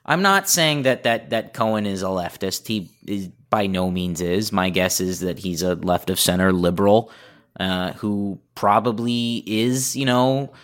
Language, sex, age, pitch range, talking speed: English, male, 20-39, 110-140 Hz, 170 wpm